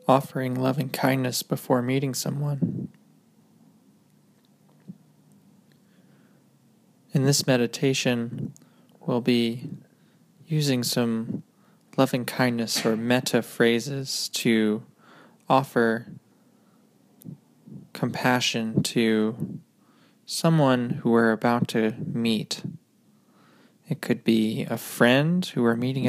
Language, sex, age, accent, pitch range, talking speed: English, male, 20-39, American, 115-175 Hz, 75 wpm